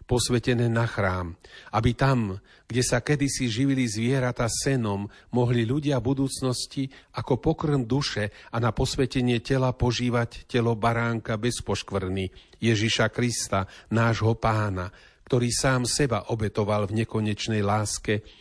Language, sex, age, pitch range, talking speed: Slovak, male, 40-59, 110-125 Hz, 115 wpm